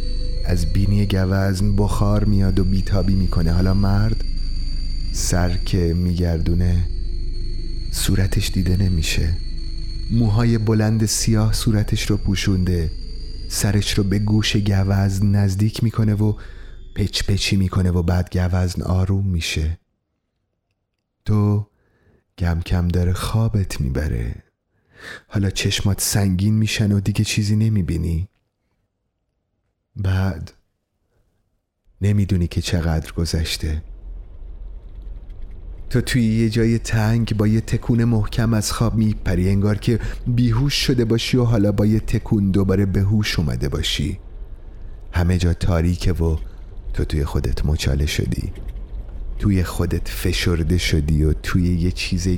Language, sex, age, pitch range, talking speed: Persian, male, 30-49, 85-105 Hz, 115 wpm